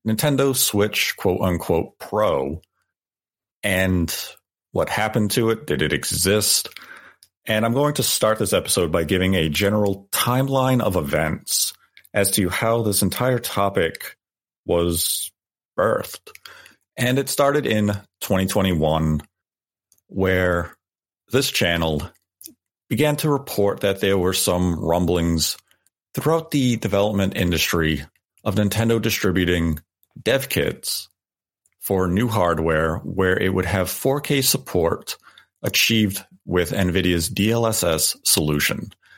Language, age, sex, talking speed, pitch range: English, 40-59, male, 115 wpm, 85-115 Hz